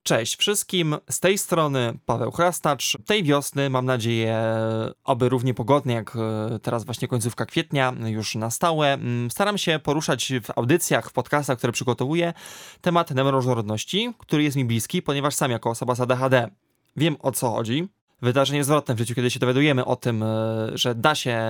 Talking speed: 165 wpm